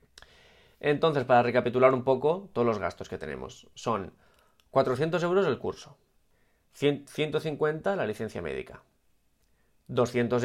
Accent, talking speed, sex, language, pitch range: Spanish, 115 wpm, male, Spanish, 110-140 Hz